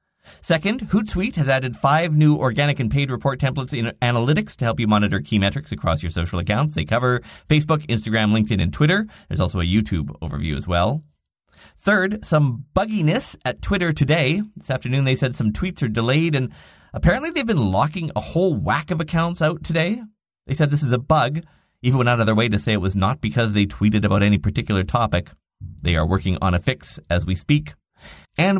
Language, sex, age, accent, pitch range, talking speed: English, male, 30-49, American, 95-155 Hz, 205 wpm